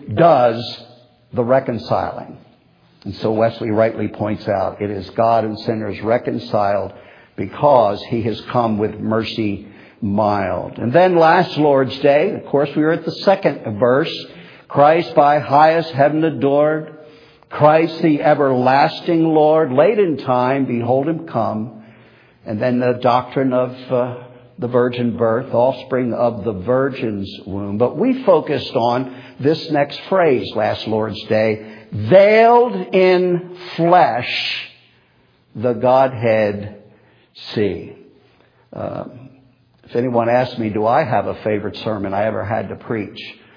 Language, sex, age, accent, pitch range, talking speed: English, male, 60-79, American, 110-145 Hz, 130 wpm